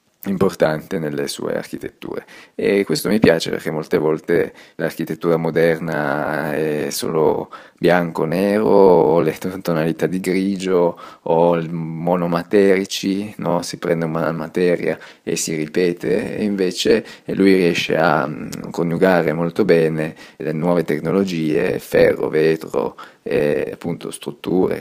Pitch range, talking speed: 80-90 Hz, 115 wpm